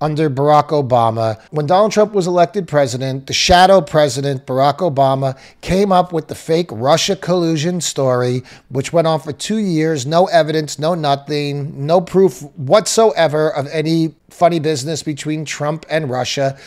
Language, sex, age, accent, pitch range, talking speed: English, male, 40-59, American, 135-180 Hz, 155 wpm